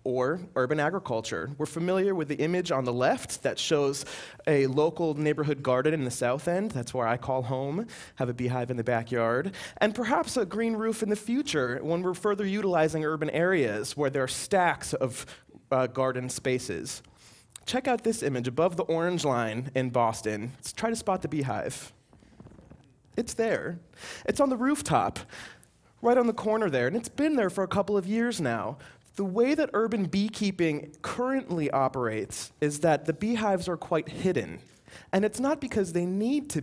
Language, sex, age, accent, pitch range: Chinese, male, 20-39, American, 130-210 Hz